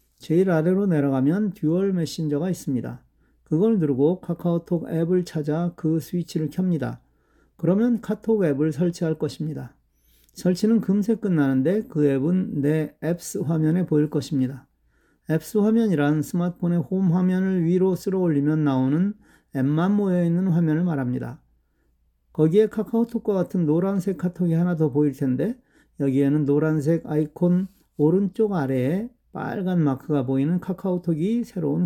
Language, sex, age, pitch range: Korean, male, 40-59, 145-185 Hz